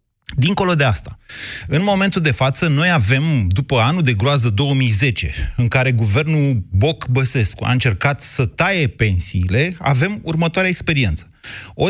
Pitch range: 115-155 Hz